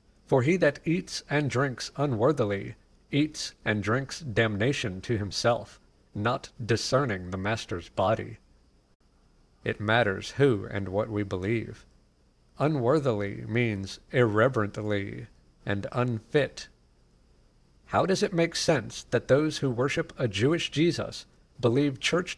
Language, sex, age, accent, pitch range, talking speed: English, male, 50-69, American, 100-140 Hz, 120 wpm